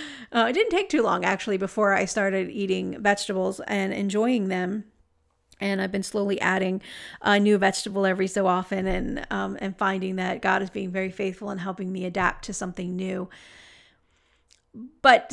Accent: American